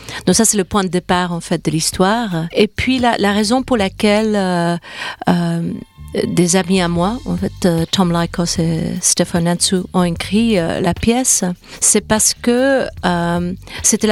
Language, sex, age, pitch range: French, female, 40-59, 180-205 Hz